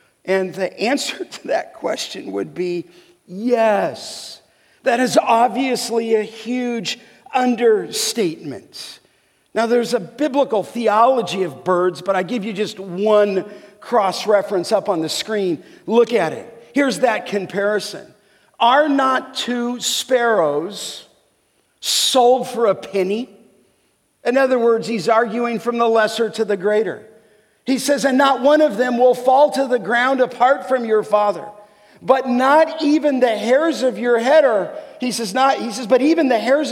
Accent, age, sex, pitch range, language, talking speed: American, 50-69, male, 200-255 Hz, English, 145 wpm